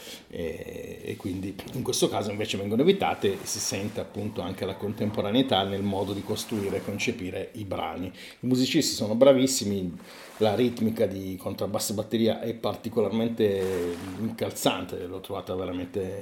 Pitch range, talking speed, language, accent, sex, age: 100-125 Hz, 140 wpm, Italian, native, male, 40-59